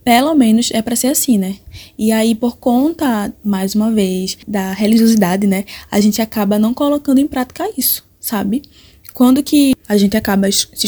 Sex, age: female, 20-39